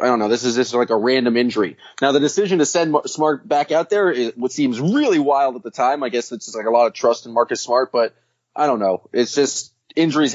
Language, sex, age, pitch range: English, male, 20-39, 115-140 Hz